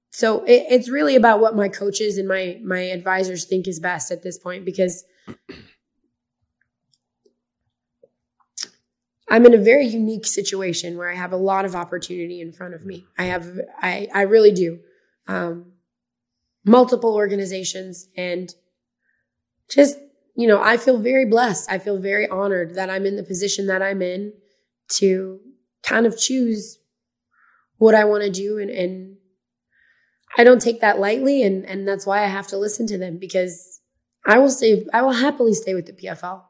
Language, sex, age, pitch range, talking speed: English, female, 20-39, 185-215 Hz, 165 wpm